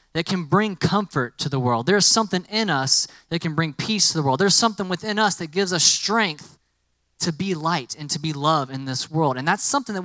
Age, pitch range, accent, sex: 20-39, 140-195 Hz, American, male